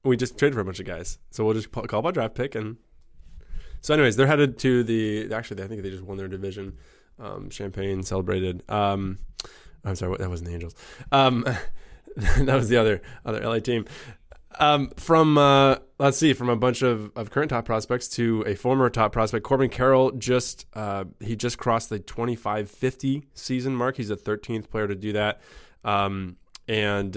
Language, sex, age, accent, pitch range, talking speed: English, male, 20-39, American, 100-125 Hz, 190 wpm